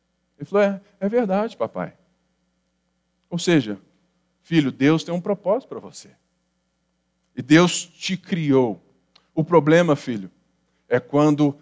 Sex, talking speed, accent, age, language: male, 125 wpm, Brazilian, 50-69, Portuguese